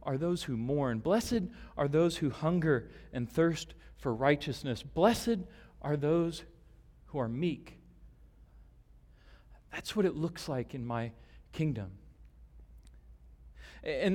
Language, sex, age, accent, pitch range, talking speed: English, male, 40-59, American, 125-190 Hz, 120 wpm